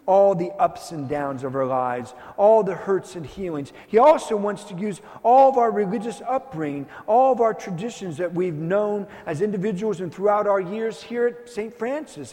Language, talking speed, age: English, 195 wpm, 50-69